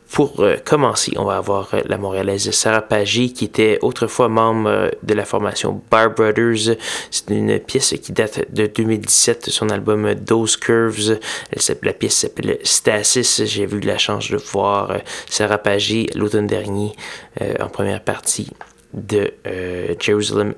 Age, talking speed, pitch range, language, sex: 20-39, 150 wpm, 105-115 Hz, French, male